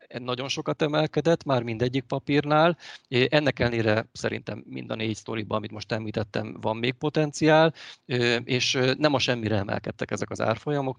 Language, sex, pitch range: Hungarian, male, 110-130 Hz